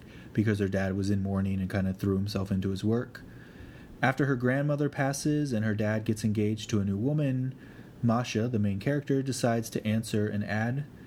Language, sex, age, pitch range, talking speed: English, male, 30-49, 105-135 Hz, 195 wpm